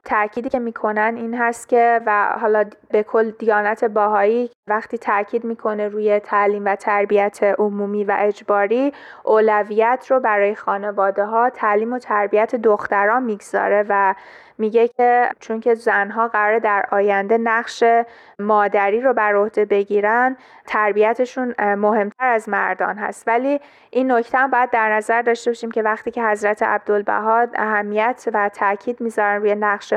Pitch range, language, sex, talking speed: 205-235 Hz, Persian, female, 140 wpm